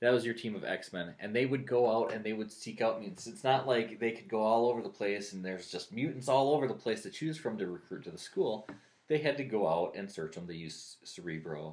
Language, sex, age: English, male, 20-39